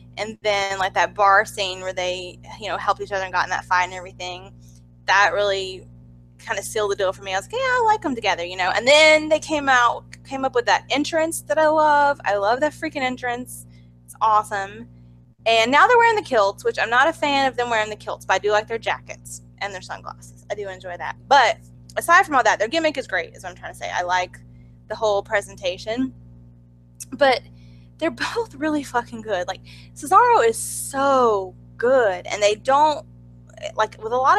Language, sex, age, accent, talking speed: English, female, 10-29, American, 220 wpm